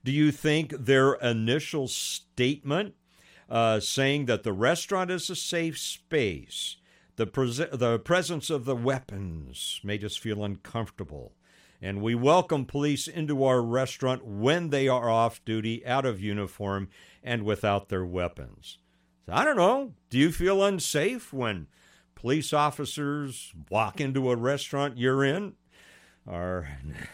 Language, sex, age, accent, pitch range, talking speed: English, male, 60-79, American, 100-140 Hz, 135 wpm